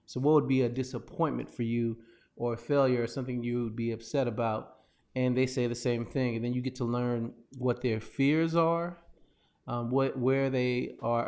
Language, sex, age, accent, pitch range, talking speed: English, male, 30-49, American, 120-145 Hz, 205 wpm